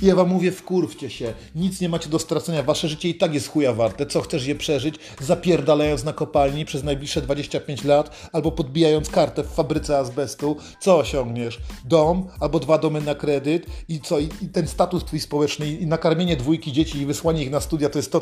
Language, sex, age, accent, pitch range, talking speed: Polish, male, 40-59, native, 135-160 Hz, 205 wpm